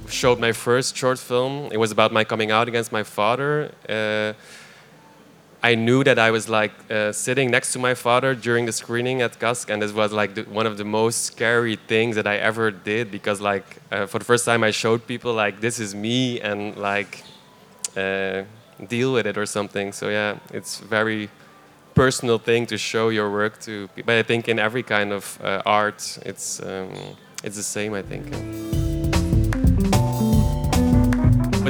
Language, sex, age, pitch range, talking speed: Dutch, male, 20-39, 105-120 Hz, 185 wpm